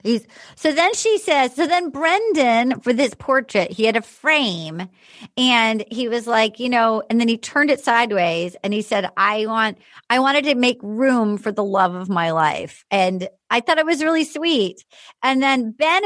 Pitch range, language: 195-260 Hz, English